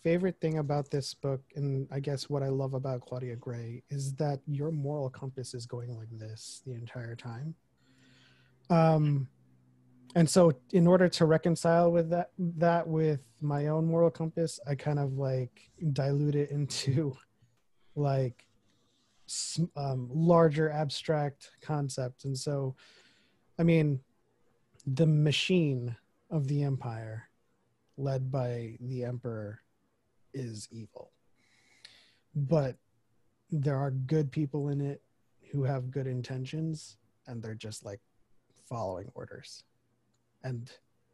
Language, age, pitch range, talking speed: English, 30-49, 120-145 Hz, 125 wpm